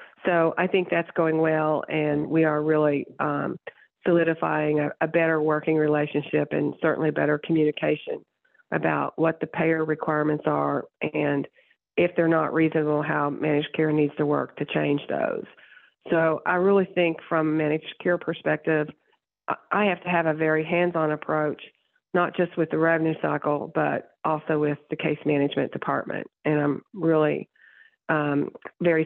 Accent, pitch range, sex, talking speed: American, 150-165 Hz, female, 155 wpm